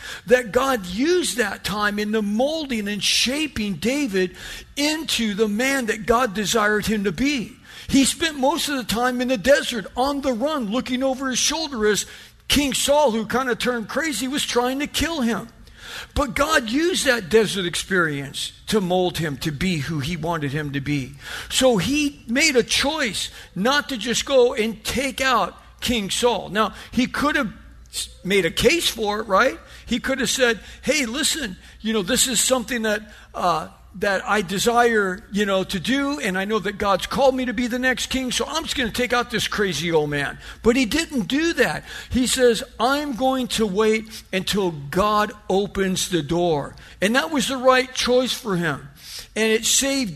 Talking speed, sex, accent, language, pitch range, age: 190 wpm, male, American, English, 185-255 Hz, 50-69